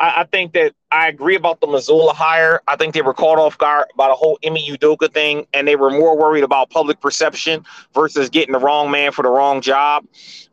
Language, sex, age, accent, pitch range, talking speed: English, male, 30-49, American, 150-195 Hz, 220 wpm